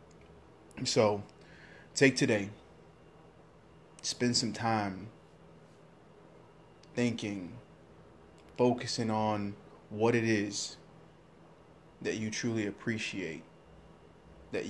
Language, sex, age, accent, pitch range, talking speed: English, male, 20-39, American, 100-115 Hz, 70 wpm